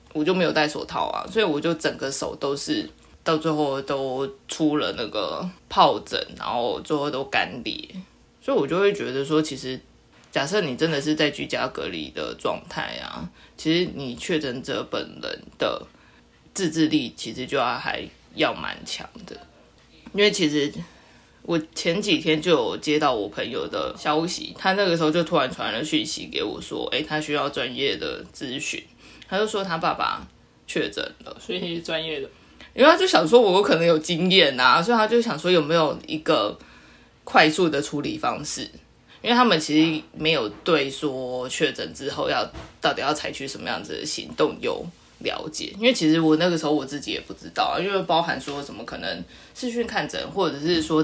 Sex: female